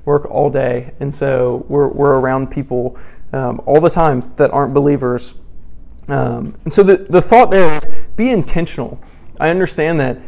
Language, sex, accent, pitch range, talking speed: English, male, American, 130-150 Hz, 170 wpm